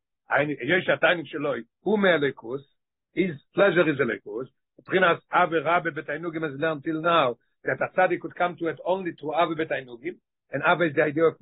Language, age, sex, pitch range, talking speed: English, 60-79, male, 150-185 Hz, 140 wpm